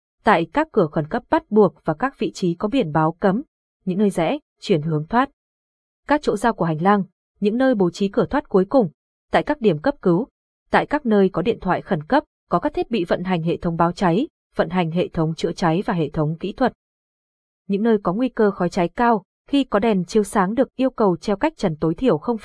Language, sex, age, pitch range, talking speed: Vietnamese, female, 20-39, 180-240 Hz, 240 wpm